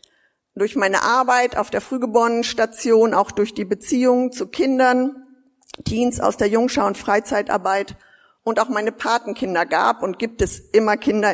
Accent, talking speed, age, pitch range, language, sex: German, 150 wpm, 50-69, 205-250 Hz, German, female